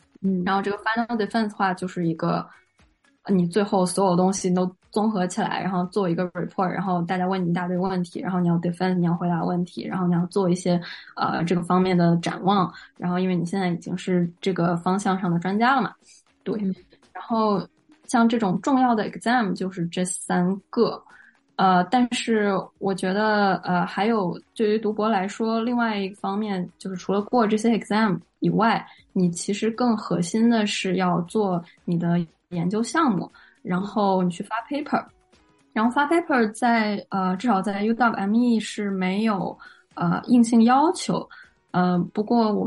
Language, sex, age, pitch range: Chinese, female, 10-29, 180-220 Hz